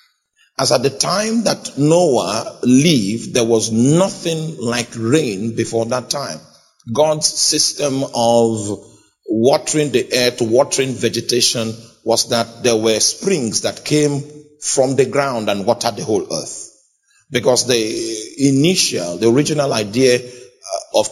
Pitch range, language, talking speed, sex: 115-180 Hz, English, 130 wpm, male